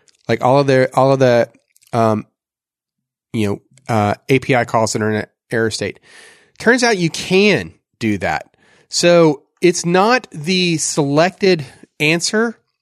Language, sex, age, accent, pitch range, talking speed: English, male, 30-49, American, 130-170 Hz, 145 wpm